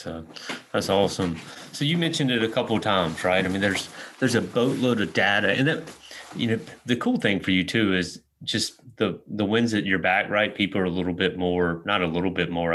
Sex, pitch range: male, 85-95 Hz